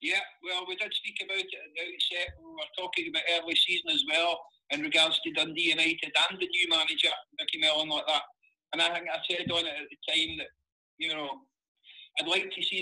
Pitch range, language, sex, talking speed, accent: 160-255 Hz, English, male, 230 wpm, British